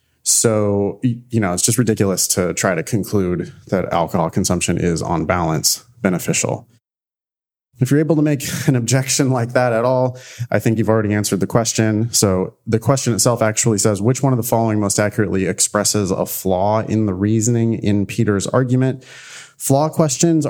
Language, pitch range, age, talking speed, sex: English, 105-130 Hz, 30-49, 175 wpm, male